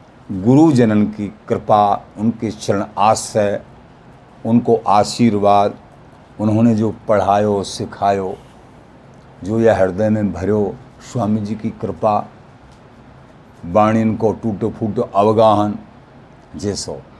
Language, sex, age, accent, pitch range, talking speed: Hindi, male, 50-69, native, 105-155 Hz, 100 wpm